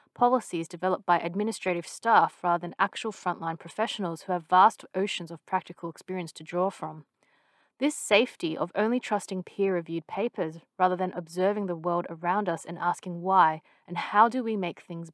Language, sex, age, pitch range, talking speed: English, female, 30-49, 170-220 Hz, 170 wpm